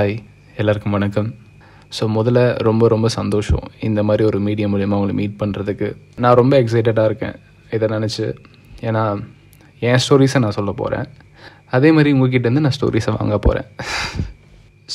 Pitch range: 110-130 Hz